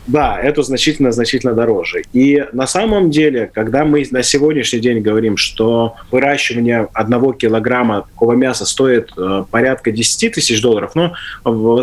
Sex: male